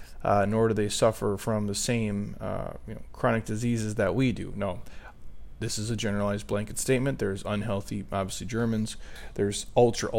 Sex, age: male, 30-49